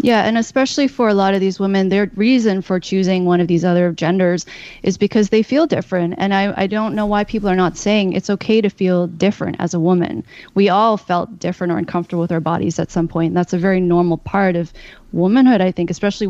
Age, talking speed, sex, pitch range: 20-39, 230 wpm, female, 175-205 Hz